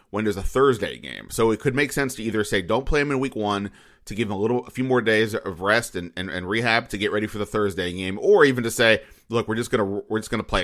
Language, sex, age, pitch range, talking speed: English, male, 30-49, 95-115 Hz, 300 wpm